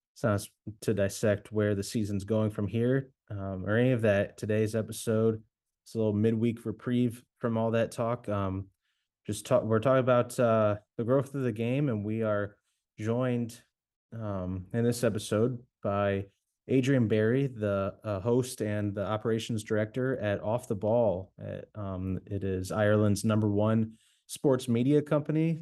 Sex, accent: male, American